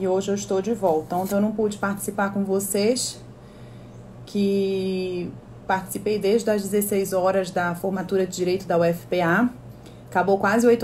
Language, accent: Portuguese, Brazilian